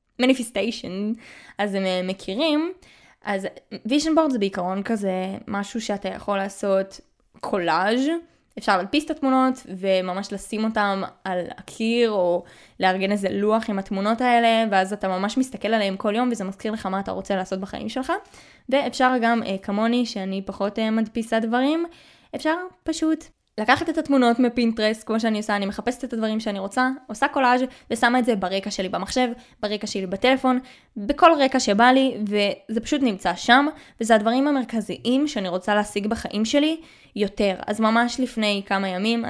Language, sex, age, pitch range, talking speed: Hebrew, female, 20-39, 200-245 Hz, 155 wpm